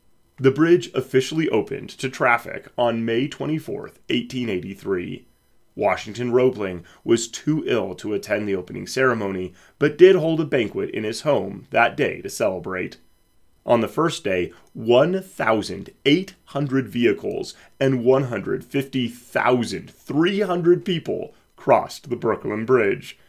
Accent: American